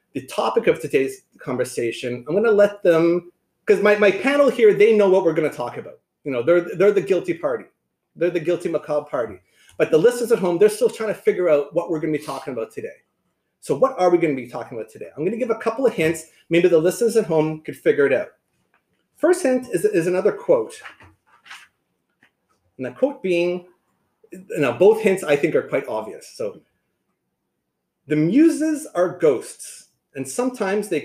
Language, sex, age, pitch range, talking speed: English, male, 30-49, 145-220 Hz, 205 wpm